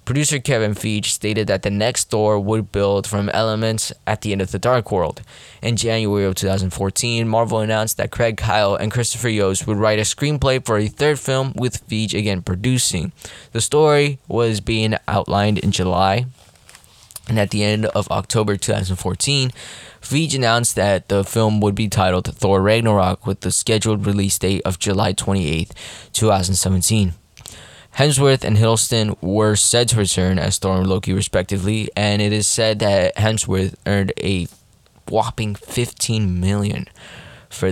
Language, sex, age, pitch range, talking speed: English, male, 10-29, 95-115 Hz, 160 wpm